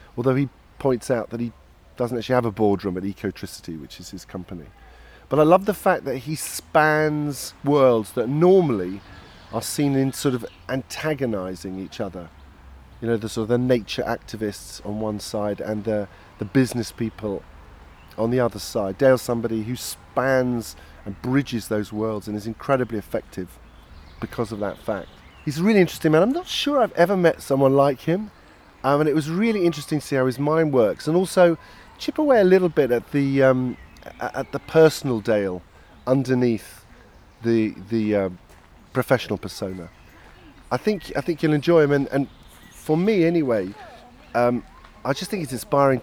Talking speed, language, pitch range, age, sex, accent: 175 wpm, English, 100-145 Hz, 40-59, male, British